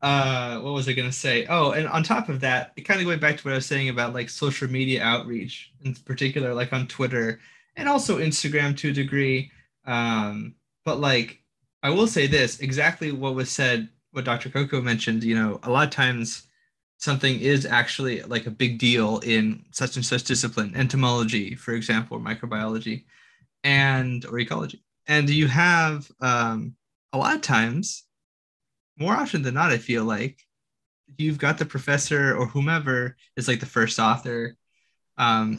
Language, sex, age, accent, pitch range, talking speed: English, male, 20-39, American, 120-140 Hz, 180 wpm